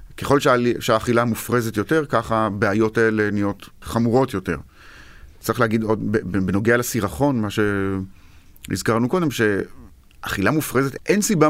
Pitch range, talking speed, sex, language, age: 100-120 Hz, 115 wpm, male, Hebrew, 30-49